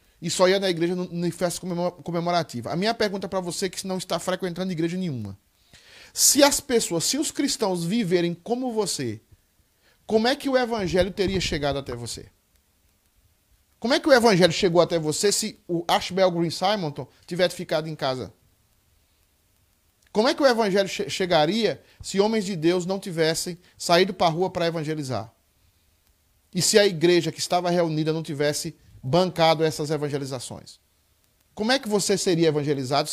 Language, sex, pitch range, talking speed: Portuguese, male, 130-185 Hz, 170 wpm